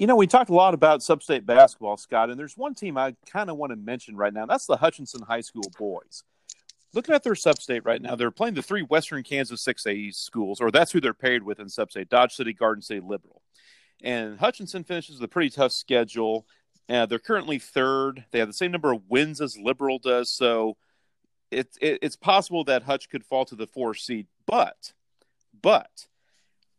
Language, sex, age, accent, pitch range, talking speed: English, male, 40-59, American, 115-160 Hz, 200 wpm